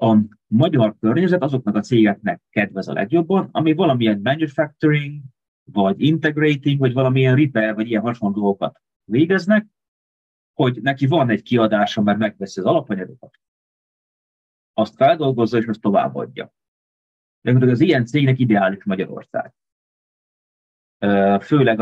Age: 30-49